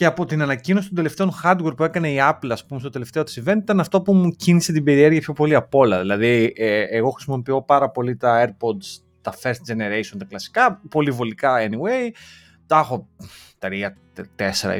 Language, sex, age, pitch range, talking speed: Greek, male, 30-49, 120-190 Hz, 185 wpm